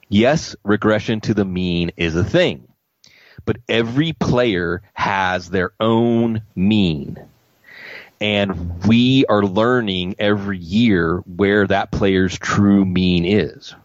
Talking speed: 115 wpm